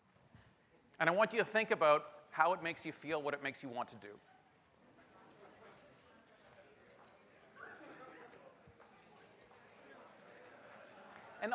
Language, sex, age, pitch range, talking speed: English, male, 40-59, 140-185 Hz, 105 wpm